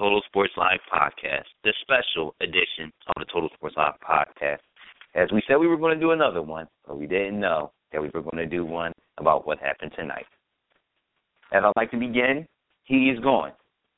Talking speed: 200 wpm